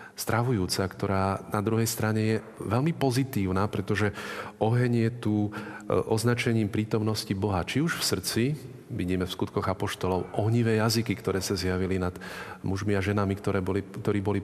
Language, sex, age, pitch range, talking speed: Slovak, male, 40-59, 100-120 Hz, 145 wpm